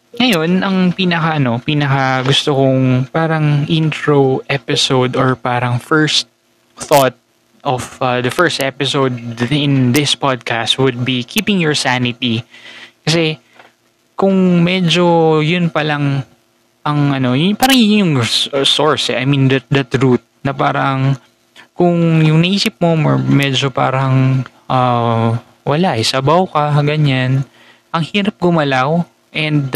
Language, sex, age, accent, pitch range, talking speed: Filipino, male, 20-39, native, 130-165 Hz, 120 wpm